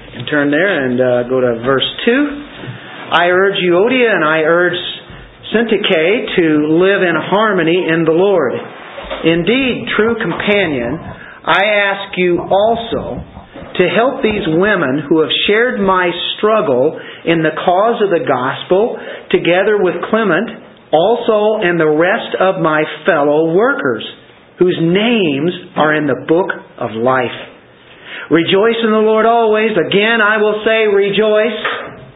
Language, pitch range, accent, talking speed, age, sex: English, 155-215 Hz, American, 135 wpm, 50-69, male